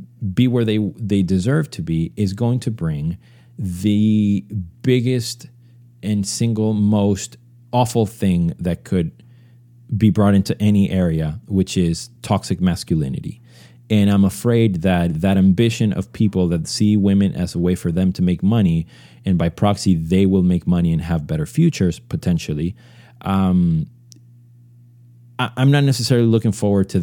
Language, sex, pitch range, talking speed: English, male, 85-120 Hz, 150 wpm